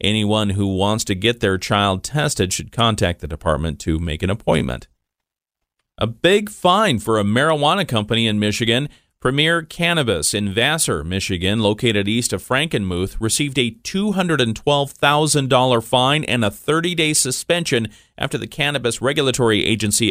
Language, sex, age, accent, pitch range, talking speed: English, male, 40-59, American, 100-140 Hz, 140 wpm